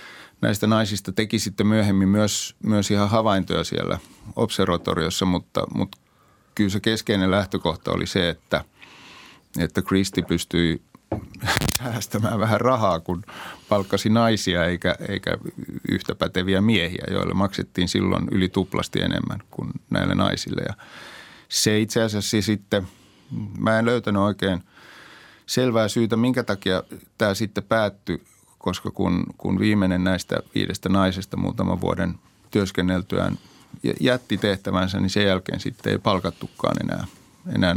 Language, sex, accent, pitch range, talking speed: Finnish, male, native, 95-110 Hz, 125 wpm